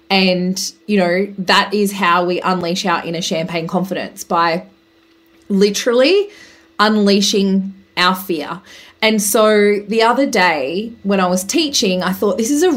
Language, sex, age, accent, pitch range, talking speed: English, female, 20-39, Australian, 190-230 Hz, 145 wpm